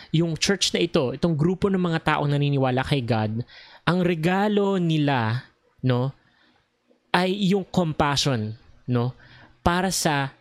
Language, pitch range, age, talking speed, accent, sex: English, 130-175 Hz, 20-39, 125 wpm, Filipino, male